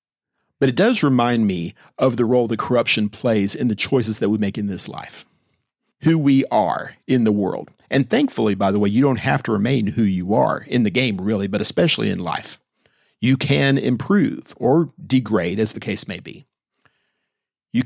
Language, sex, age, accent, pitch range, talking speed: English, male, 50-69, American, 110-135 Hz, 195 wpm